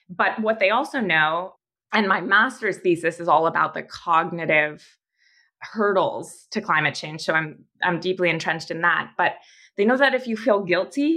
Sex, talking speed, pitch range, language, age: female, 175 wpm, 175-220 Hz, English, 20-39